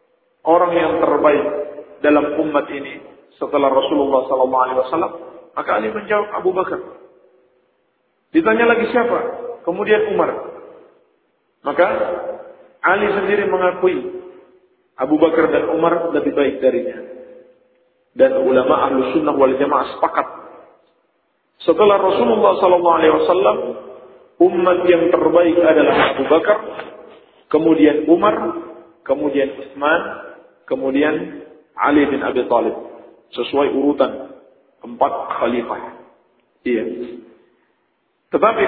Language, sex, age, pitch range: Indonesian, male, 40-59, 145-210 Hz